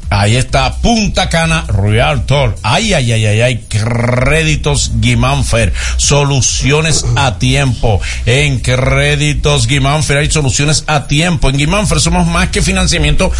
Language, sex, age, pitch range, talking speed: Spanish, male, 50-69, 115-150 Hz, 125 wpm